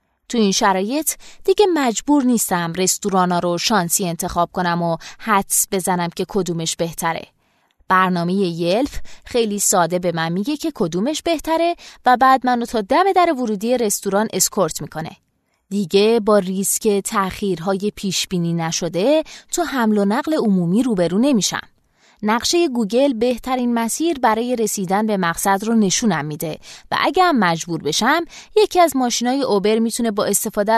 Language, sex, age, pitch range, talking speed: Persian, female, 20-39, 180-265 Hz, 150 wpm